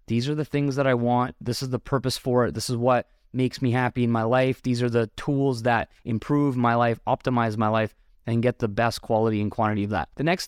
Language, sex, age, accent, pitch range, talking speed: English, male, 20-39, American, 115-145 Hz, 250 wpm